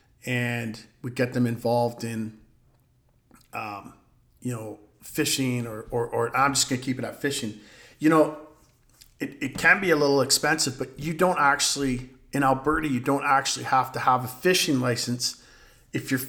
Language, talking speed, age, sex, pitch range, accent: English, 175 wpm, 40-59, male, 120-140 Hz, American